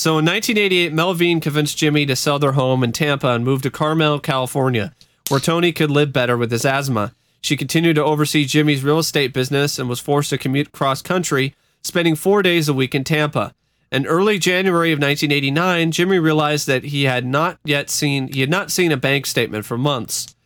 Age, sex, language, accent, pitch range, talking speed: 40-59, male, English, American, 135-175 Hz, 200 wpm